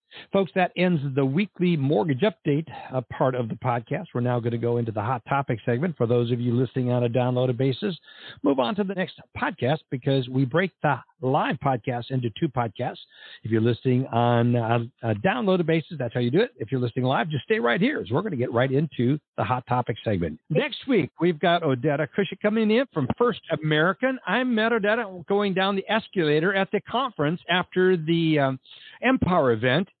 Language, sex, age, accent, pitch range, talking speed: English, male, 60-79, American, 125-185 Hz, 205 wpm